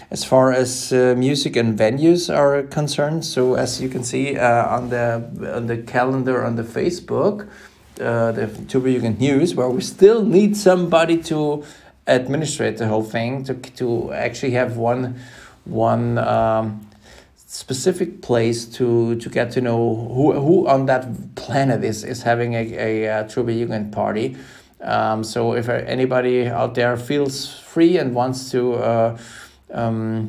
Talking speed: 155 wpm